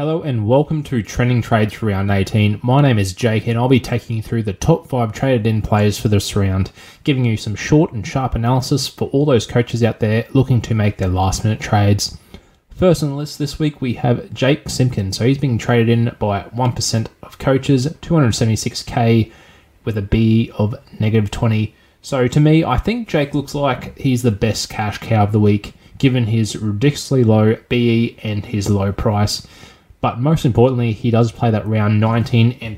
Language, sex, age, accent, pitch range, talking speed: English, male, 20-39, Australian, 105-130 Hz, 200 wpm